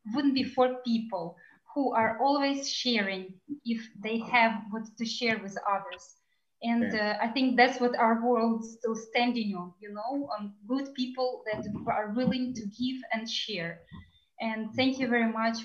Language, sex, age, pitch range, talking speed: English, female, 20-39, 220-275 Hz, 175 wpm